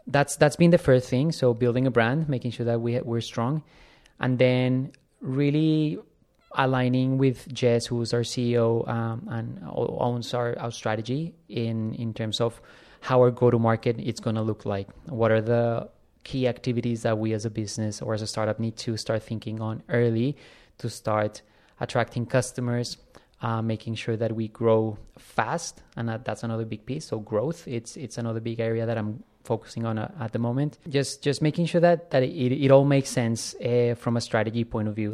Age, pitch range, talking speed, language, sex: 20-39, 110-125 Hz, 195 wpm, English, male